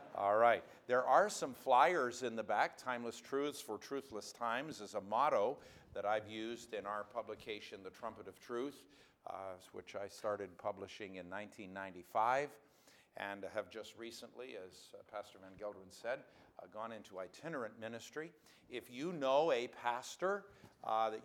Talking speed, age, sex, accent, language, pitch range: 160 wpm, 50-69, male, American, English, 100-125 Hz